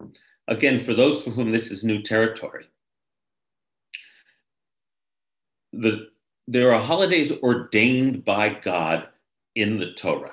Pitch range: 95-115 Hz